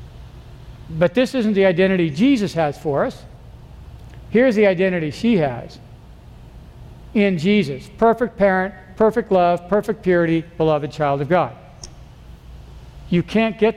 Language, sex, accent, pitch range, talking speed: English, male, American, 155-205 Hz, 125 wpm